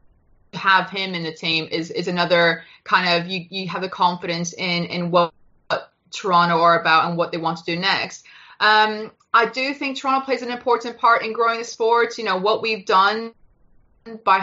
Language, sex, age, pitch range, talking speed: English, female, 20-39, 175-220 Hz, 195 wpm